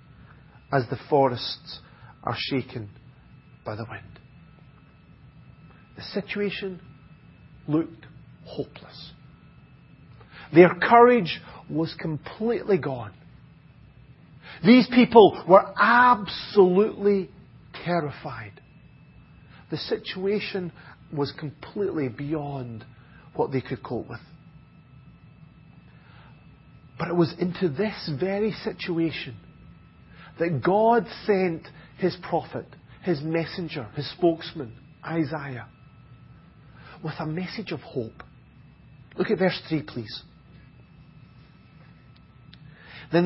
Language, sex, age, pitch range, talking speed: English, male, 40-59, 135-180 Hz, 85 wpm